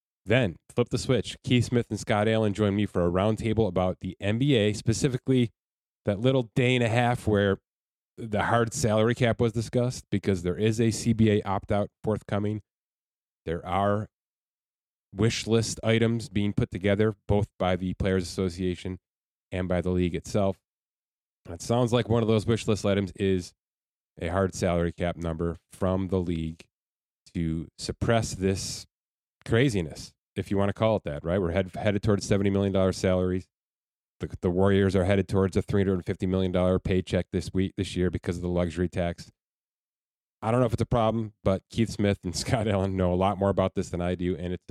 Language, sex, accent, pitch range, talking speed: English, male, American, 90-110 Hz, 185 wpm